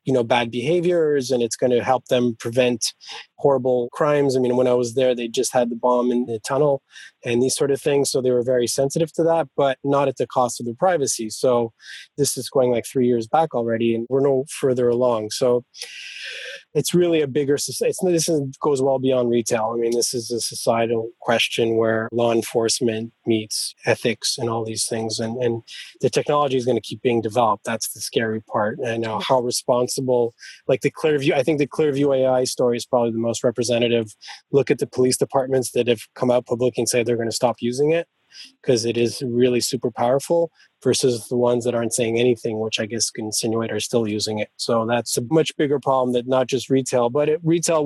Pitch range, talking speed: 115-135 Hz, 220 wpm